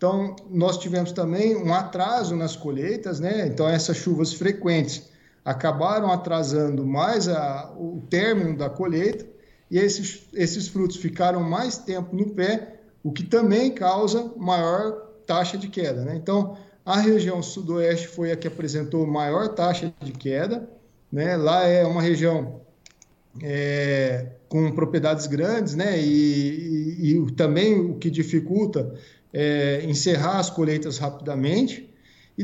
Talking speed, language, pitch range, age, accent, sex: 130 wpm, Portuguese, 155-200 Hz, 50-69, Brazilian, male